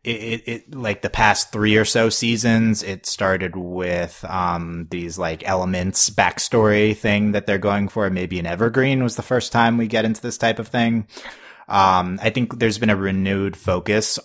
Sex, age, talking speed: male, 30-49, 190 wpm